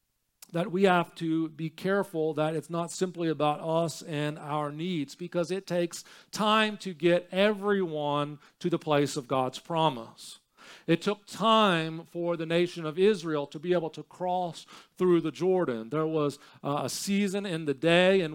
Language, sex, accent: English, male, American